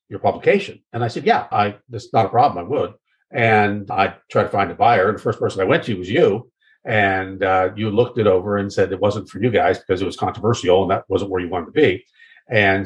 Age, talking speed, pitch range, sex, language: 50-69, 255 wpm, 105-175 Hz, male, English